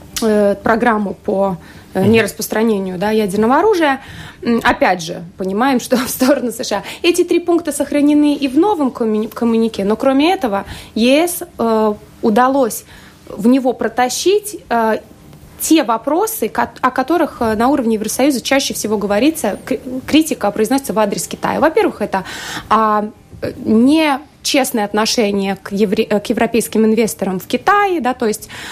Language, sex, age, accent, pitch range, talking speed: Russian, female, 20-39, native, 210-270 Hz, 130 wpm